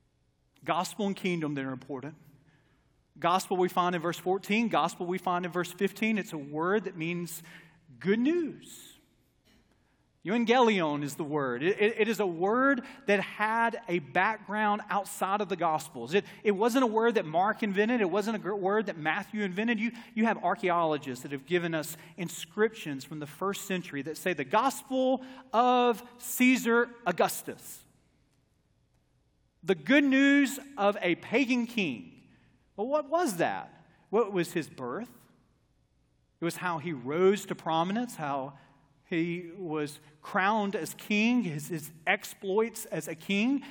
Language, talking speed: English, 150 wpm